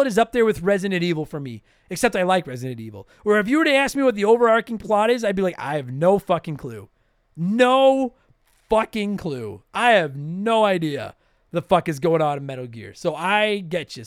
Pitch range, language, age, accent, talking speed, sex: 160-230 Hz, English, 30-49, American, 220 wpm, male